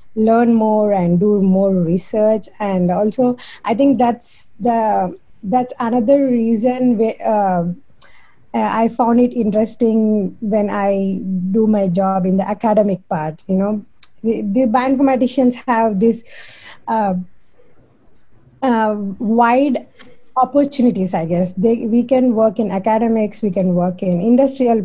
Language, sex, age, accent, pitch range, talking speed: English, female, 20-39, Indian, 195-235 Hz, 130 wpm